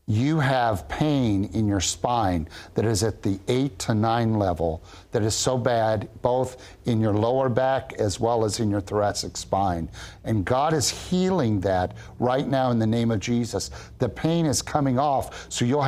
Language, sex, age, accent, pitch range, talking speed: English, male, 50-69, American, 110-140 Hz, 185 wpm